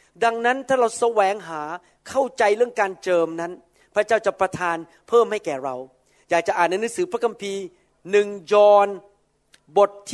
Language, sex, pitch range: Thai, male, 190-255 Hz